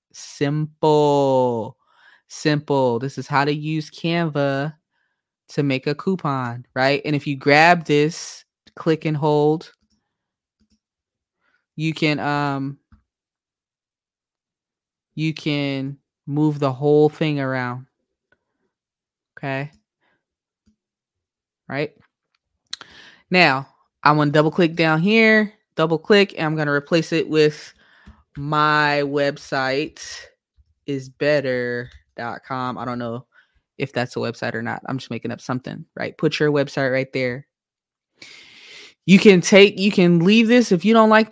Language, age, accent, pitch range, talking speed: English, 20-39, American, 140-170 Hz, 125 wpm